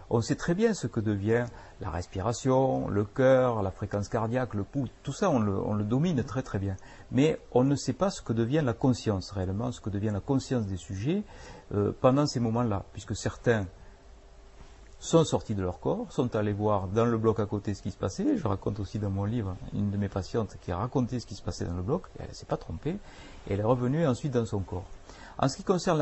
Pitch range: 100-130 Hz